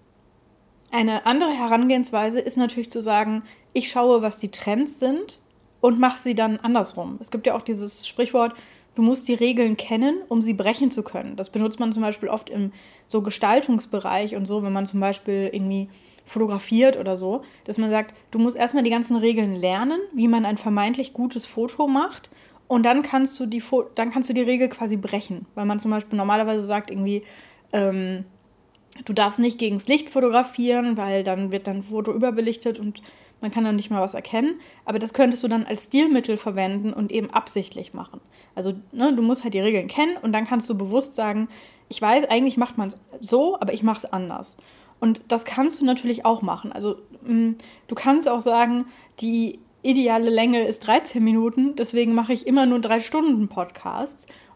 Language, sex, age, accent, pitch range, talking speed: German, female, 10-29, German, 210-245 Hz, 195 wpm